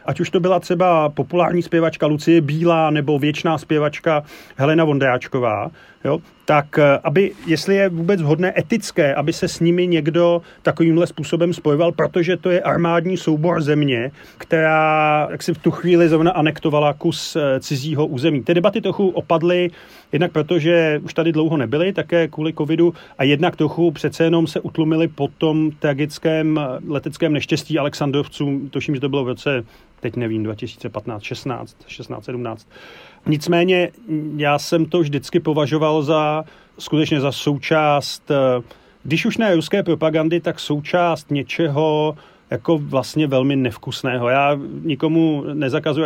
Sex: male